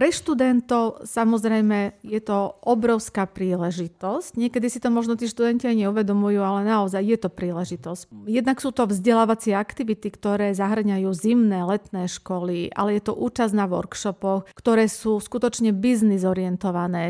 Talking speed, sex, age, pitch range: 140 wpm, female, 40-59, 195-235 Hz